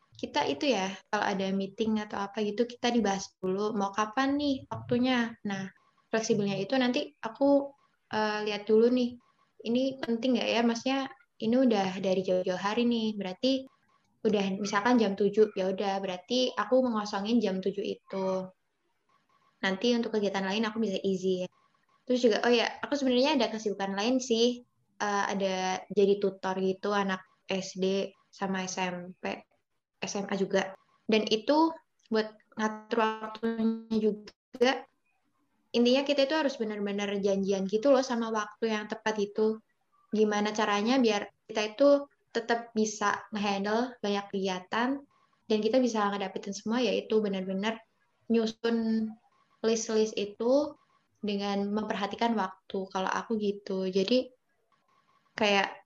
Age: 10-29